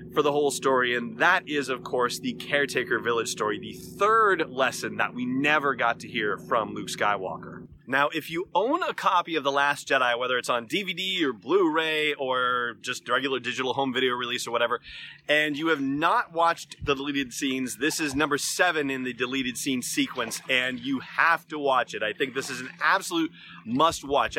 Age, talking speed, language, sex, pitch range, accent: 30-49, 195 wpm, English, male, 130-175 Hz, American